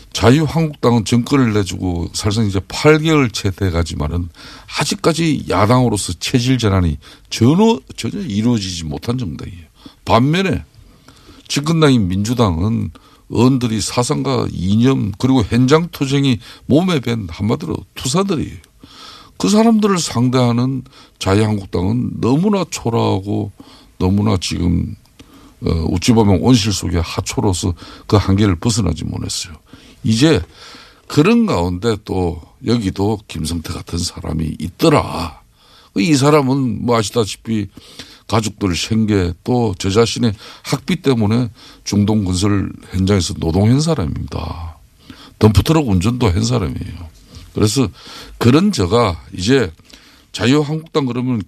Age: 50-69